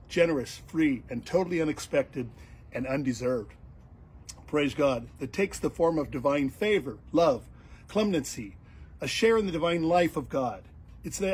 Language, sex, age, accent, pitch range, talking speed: English, male, 50-69, American, 130-175 Hz, 150 wpm